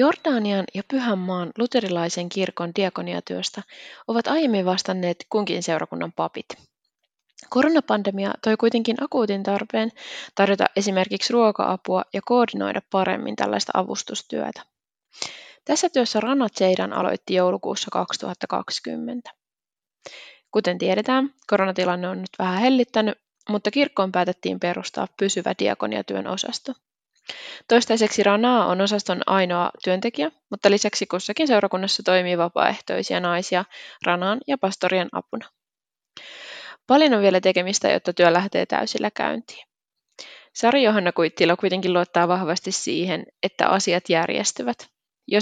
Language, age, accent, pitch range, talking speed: Finnish, 20-39, native, 185-230 Hz, 110 wpm